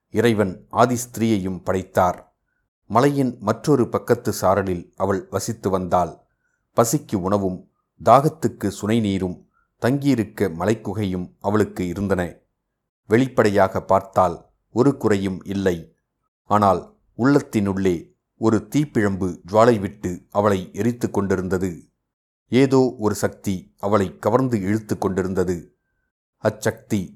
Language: Tamil